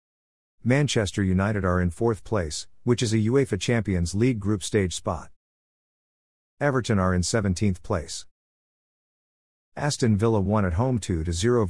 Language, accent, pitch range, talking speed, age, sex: English, American, 90-115 Hz, 135 wpm, 50-69, male